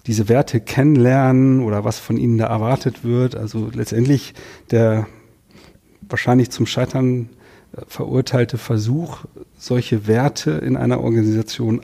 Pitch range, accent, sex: 110-130 Hz, German, male